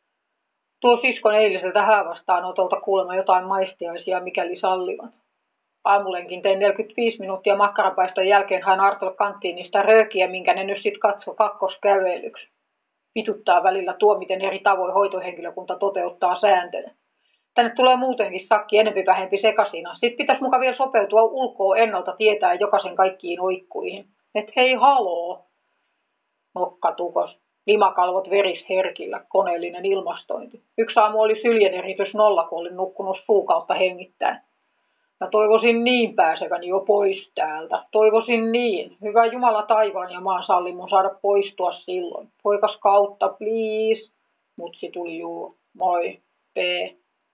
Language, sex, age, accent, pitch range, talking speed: Finnish, female, 30-49, native, 185-215 Hz, 125 wpm